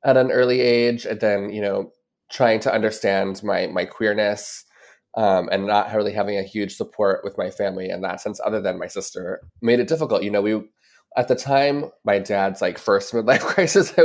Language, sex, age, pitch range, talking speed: English, male, 20-39, 100-120 Hz, 205 wpm